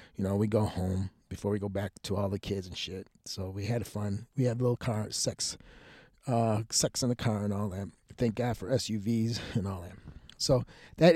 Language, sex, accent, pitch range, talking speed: English, male, American, 105-140 Hz, 220 wpm